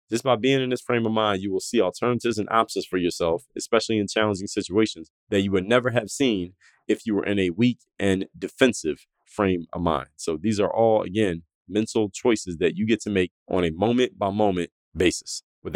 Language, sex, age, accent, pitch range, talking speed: English, male, 20-39, American, 90-110 Hz, 215 wpm